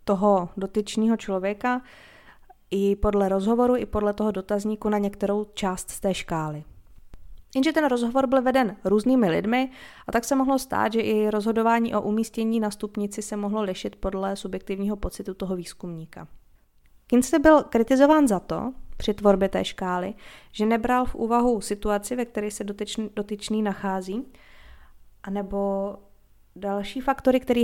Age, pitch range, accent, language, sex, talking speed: 20-39, 190-220 Hz, native, Czech, female, 145 wpm